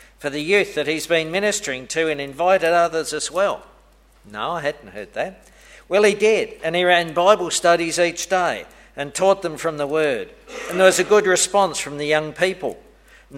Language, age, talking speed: English, 50-69, 195 wpm